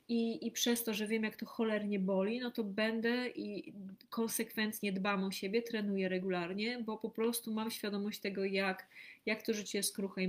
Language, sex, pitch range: Polish, female, 195-235 Hz